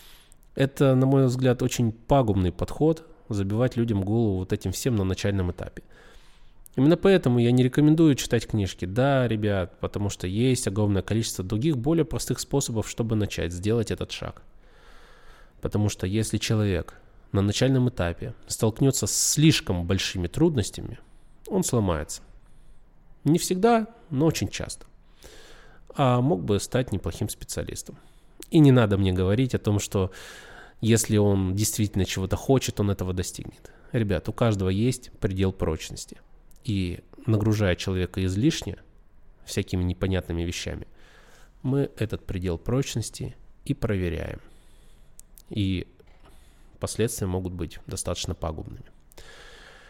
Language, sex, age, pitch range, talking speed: Russian, male, 20-39, 95-125 Hz, 125 wpm